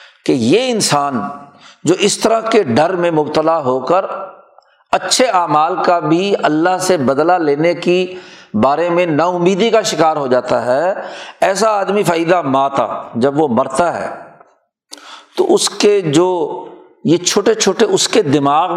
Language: Urdu